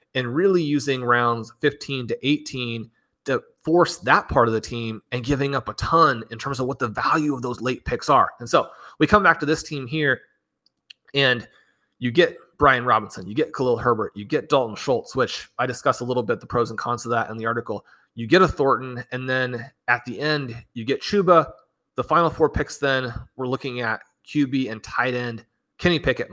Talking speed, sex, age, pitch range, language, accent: 210 wpm, male, 30-49, 120-145 Hz, English, American